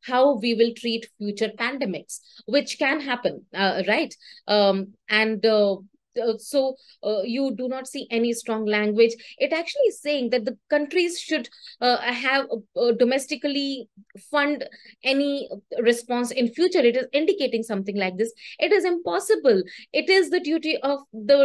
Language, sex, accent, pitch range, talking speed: English, female, Indian, 200-260 Hz, 155 wpm